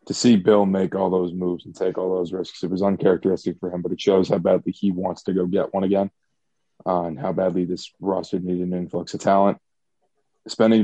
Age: 20-39